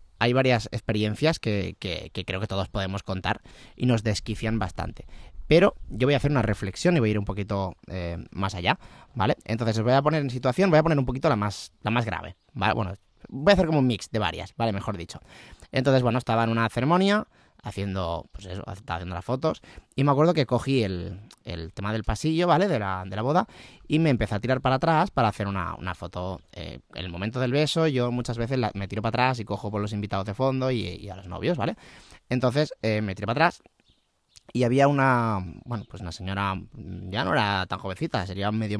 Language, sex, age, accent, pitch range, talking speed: Spanish, male, 20-39, Spanish, 100-125 Hz, 225 wpm